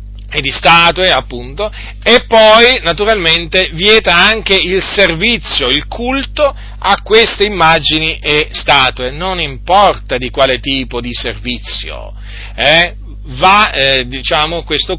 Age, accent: 40-59, native